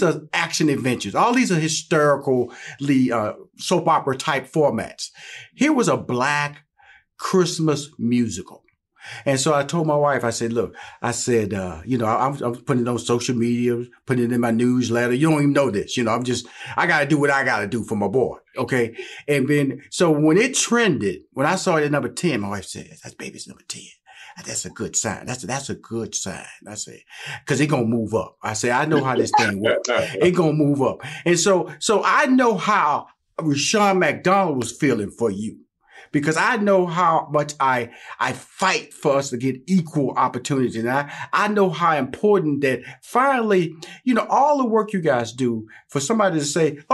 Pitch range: 120-175 Hz